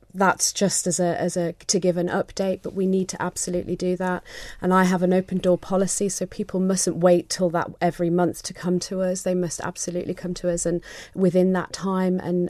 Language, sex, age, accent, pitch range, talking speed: English, female, 30-49, British, 175-190 Hz, 235 wpm